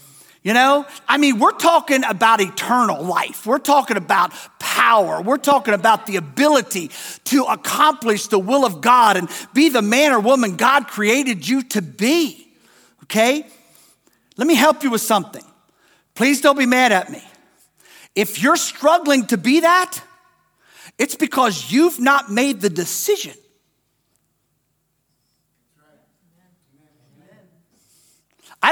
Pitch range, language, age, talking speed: 195-280 Hz, English, 50-69, 130 wpm